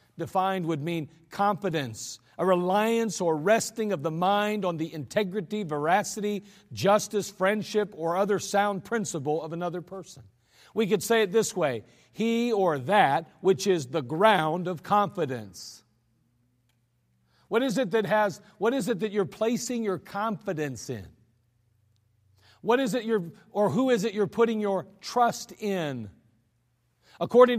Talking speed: 145 wpm